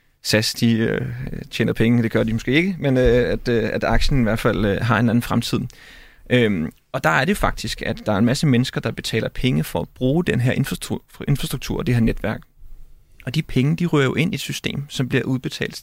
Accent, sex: native, male